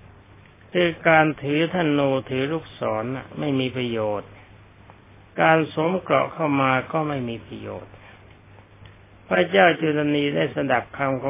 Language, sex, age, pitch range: Thai, male, 60-79, 105-150 Hz